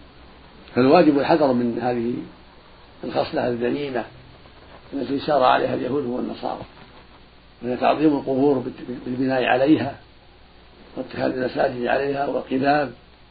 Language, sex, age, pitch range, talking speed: Arabic, male, 60-79, 85-140 Hz, 90 wpm